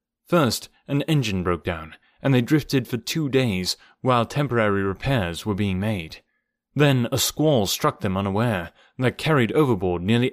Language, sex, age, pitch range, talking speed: English, male, 30-49, 100-130 Hz, 155 wpm